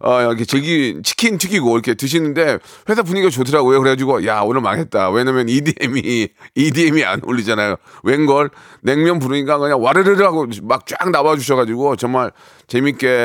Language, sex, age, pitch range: Korean, male, 30-49, 125-170 Hz